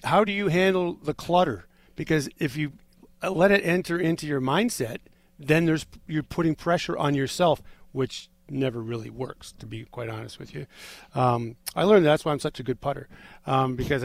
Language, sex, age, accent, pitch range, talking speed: English, male, 50-69, American, 135-180 Hz, 190 wpm